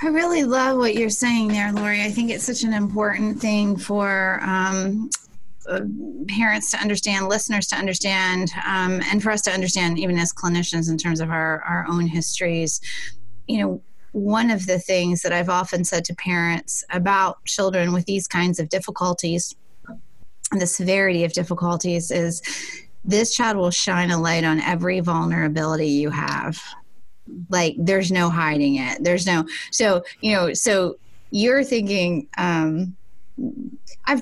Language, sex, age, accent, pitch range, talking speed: English, female, 30-49, American, 175-220 Hz, 160 wpm